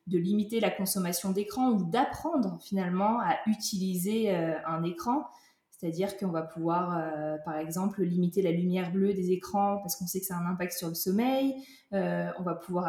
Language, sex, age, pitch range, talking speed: French, female, 20-39, 175-220 Hz, 190 wpm